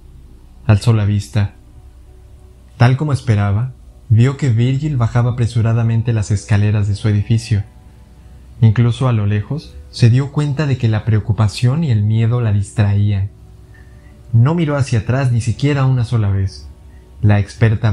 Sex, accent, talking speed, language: male, Mexican, 145 wpm, Spanish